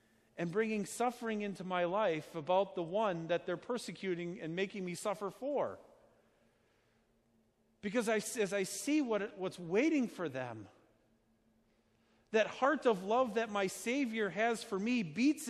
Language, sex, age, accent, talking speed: English, male, 50-69, American, 140 wpm